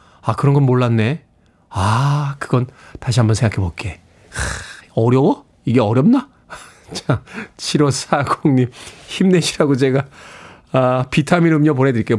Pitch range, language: 125-180 Hz, Korean